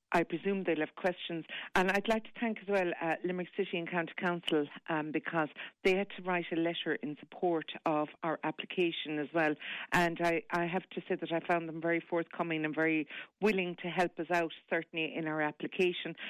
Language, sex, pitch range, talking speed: English, female, 170-200 Hz, 205 wpm